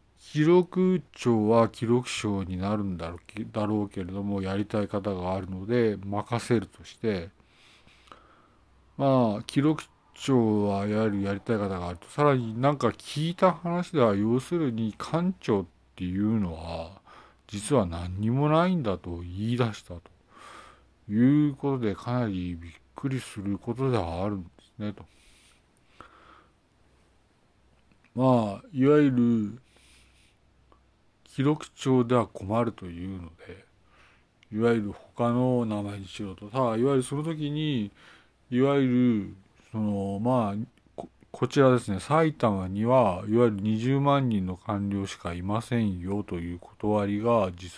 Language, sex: Japanese, male